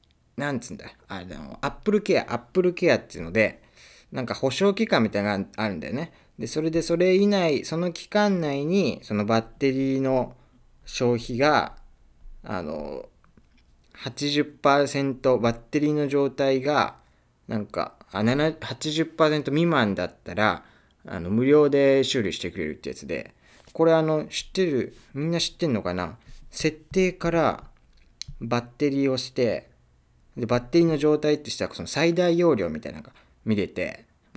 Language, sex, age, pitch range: Japanese, male, 20-39, 100-160 Hz